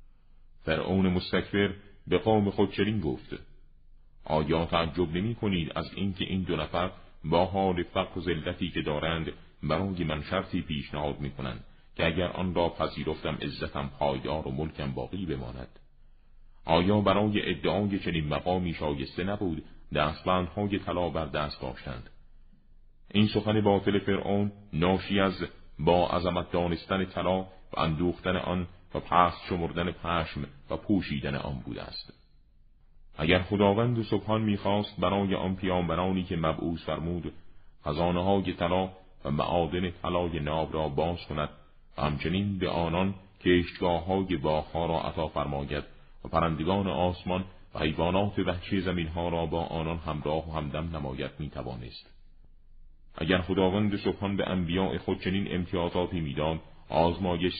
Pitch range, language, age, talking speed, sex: 75-95 Hz, Persian, 40-59, 130 wpm, male